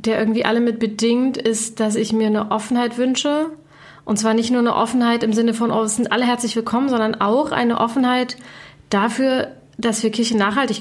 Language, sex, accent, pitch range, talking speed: German, female, German, 220-255 Hz, 200 wpm